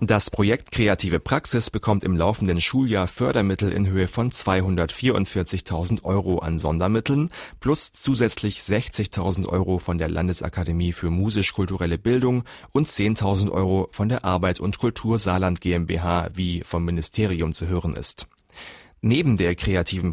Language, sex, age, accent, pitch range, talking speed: German, male, 30-49, German, 90-110 Hz, 135 wpm